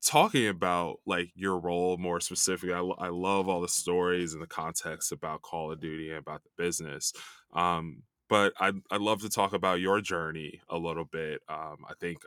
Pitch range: 85-105 Hz